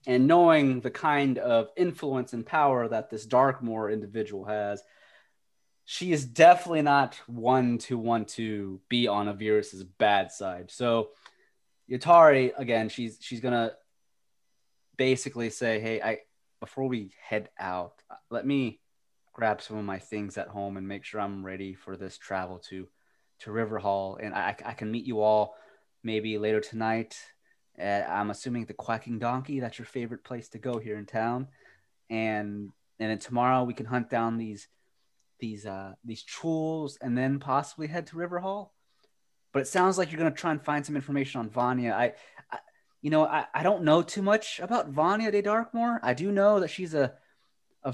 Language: English